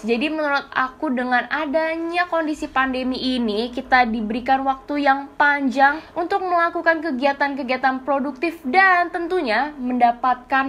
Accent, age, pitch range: native, 10-29, 240-330 Hz